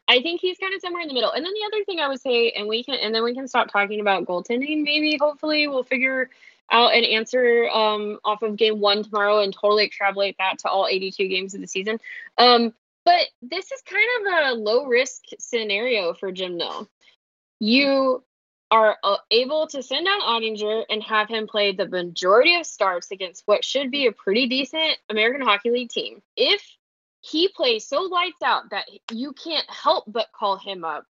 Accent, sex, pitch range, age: American, female, 210-325 Hz, 10-29